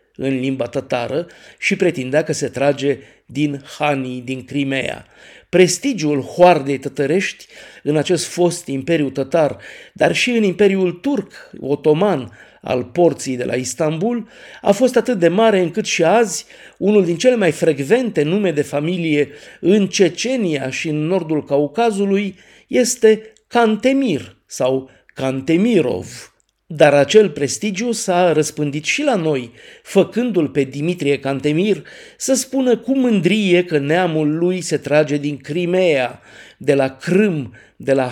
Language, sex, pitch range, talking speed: Romanian, male, 140-200 Hz, 135 wpm